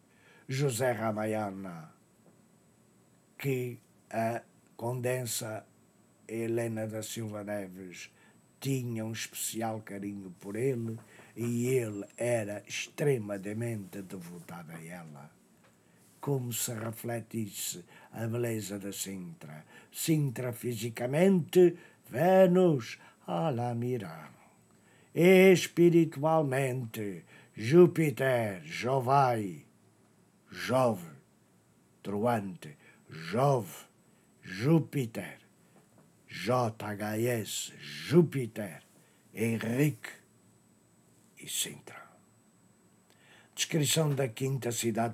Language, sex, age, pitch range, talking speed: English, male, 60-79, 110-140 Hz, 70 wpm